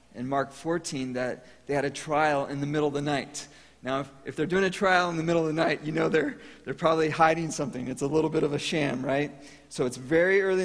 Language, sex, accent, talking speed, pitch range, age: English, male, American, 260 wpm, 130-165 Hz, 40-59